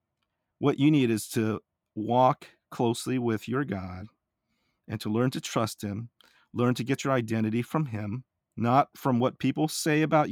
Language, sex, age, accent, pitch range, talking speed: English, male, 40-59, American, 115-150 Hz, 170 wpm